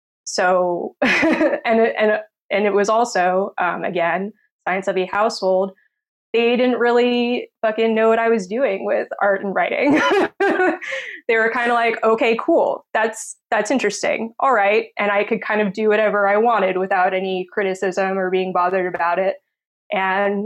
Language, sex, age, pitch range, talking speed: English, female, 20-39, 190-245 Hz, 165 wpm